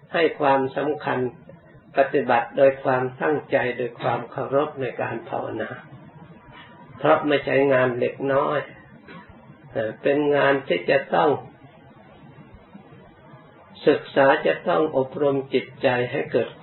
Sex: male